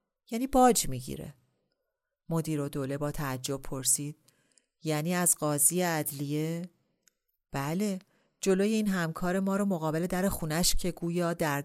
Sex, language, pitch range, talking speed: female, Persian, 145-190 Hz, 125 wpm